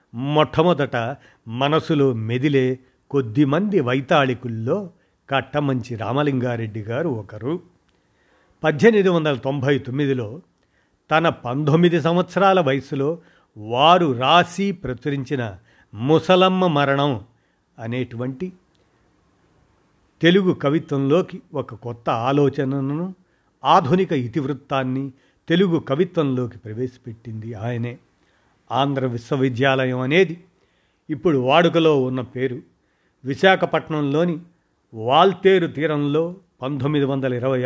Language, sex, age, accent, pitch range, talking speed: Telugu, male, 50-69, native, 125-165 Hz, 75 wpm